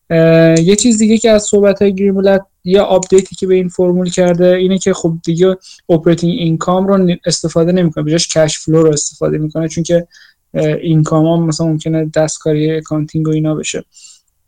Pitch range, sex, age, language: 160-185 Hz, male, 20-39, Persian